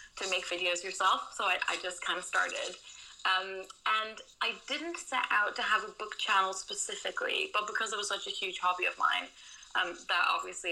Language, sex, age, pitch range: English, female, 20-39, 185-245 Hz